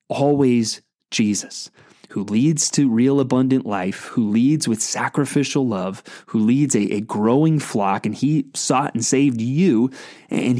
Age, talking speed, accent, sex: 30-49, 145 wpm, American, male